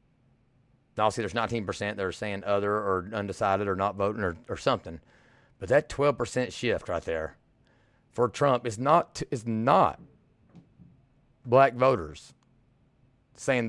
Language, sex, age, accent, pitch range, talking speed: English, male, 30-49, American, 110-130 Hz, 135 wpm